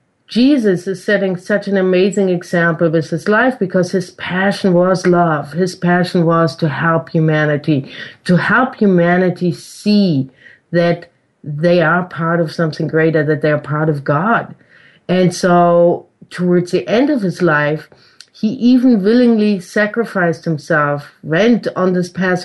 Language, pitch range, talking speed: English, 165-200 Hz, 145 wpm